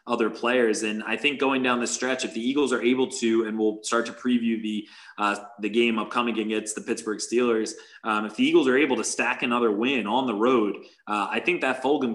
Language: English